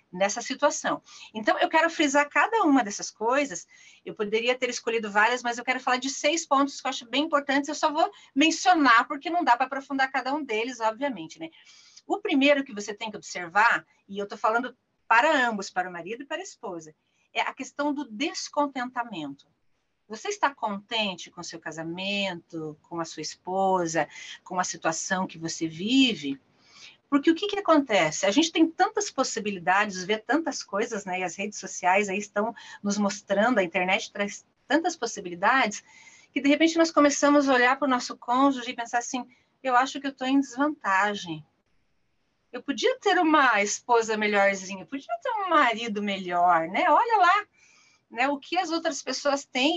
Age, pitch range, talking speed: 40-59, 200-290 Hz, 185 wpm